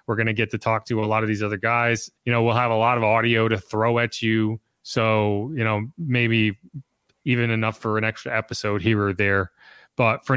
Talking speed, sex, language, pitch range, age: 230 wpm, male, English, 110-145 Hz, 30-49